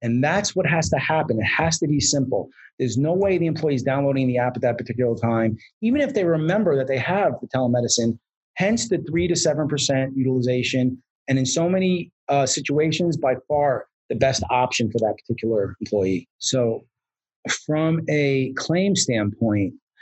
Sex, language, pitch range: male, English, 120-150 Hz